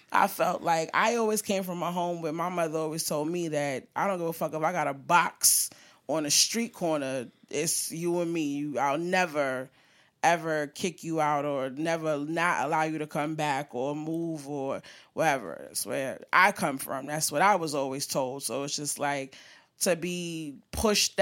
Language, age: English, 20-39